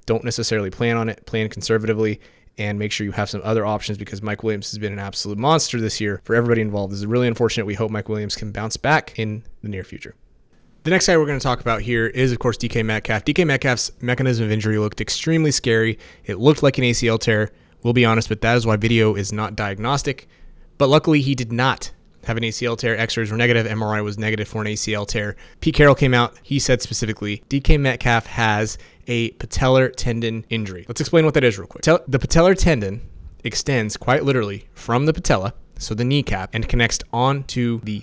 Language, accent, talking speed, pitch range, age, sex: English, American, 220 wpm, 105-130 Hz, 20-39, male